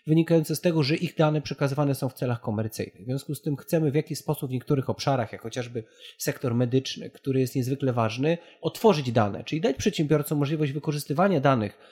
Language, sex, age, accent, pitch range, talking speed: Polish, male, 30-49, native, 120-150 Hz, 190 wpm